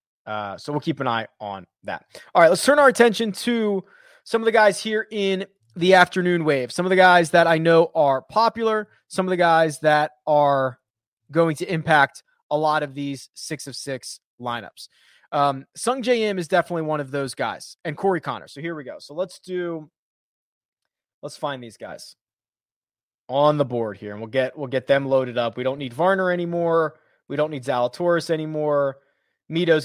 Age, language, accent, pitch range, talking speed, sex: 20-39, English, American, 135-185 Hz, 195 wpm, male